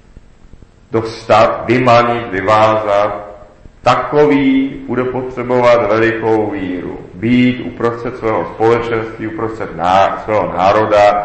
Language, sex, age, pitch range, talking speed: Czech, male, 40-59, 90-115 Hz, 85 wpm